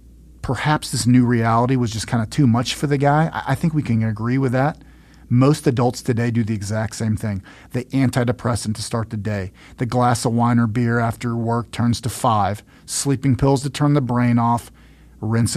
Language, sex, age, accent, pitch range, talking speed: English, male, 40-59, American, 105-130 Hz, 205 wpm